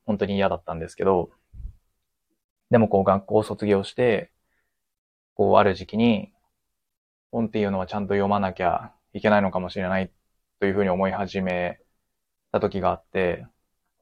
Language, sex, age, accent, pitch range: Japanese, male, 20-39, native, 95-105 Hz